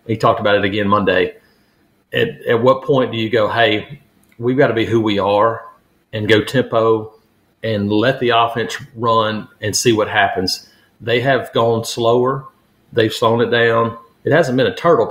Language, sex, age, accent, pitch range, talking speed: English, male, 40-59, American, 105-125 Hz, 185 wpm